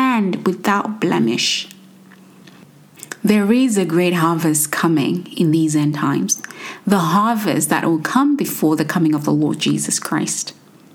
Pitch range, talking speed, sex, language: 165-225 Hz, 135 wpm, female, English